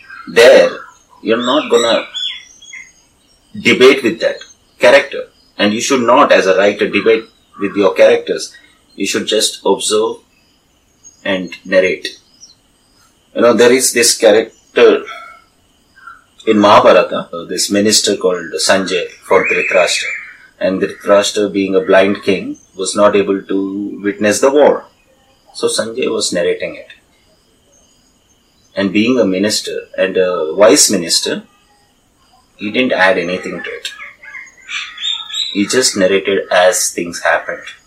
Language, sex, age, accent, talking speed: English, male, 30-49, Indian, 125 wpm